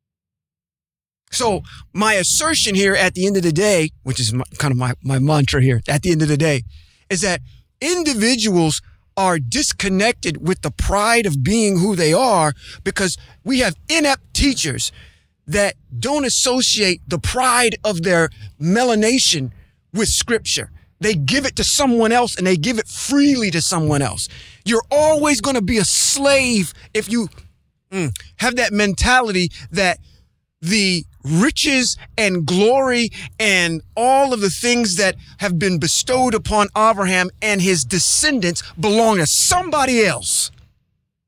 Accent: American